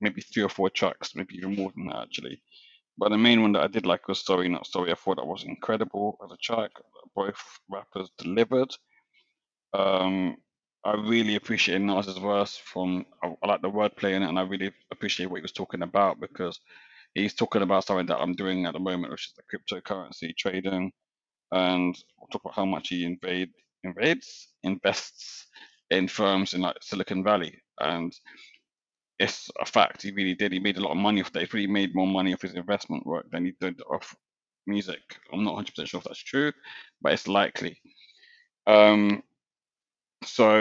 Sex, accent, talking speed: male, British, 195 wpm